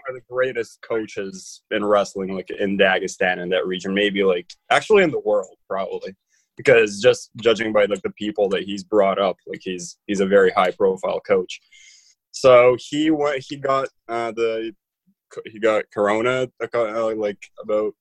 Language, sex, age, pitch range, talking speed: English, male, 20-39, 100-130 Hz, 165 wpm